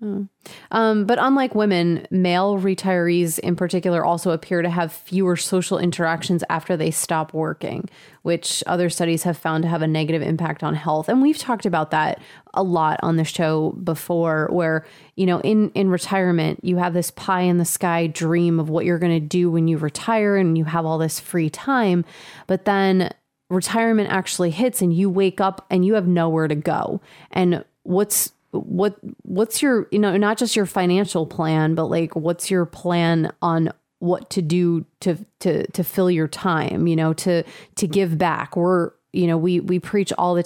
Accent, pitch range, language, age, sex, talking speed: American, 165-190 Hz, English, 30-49, female, 190 wpm